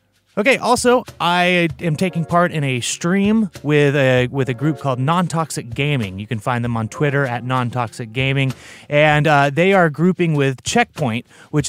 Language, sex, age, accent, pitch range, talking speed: English, male, 30-49, American, 125-165 Hz, 175 wpm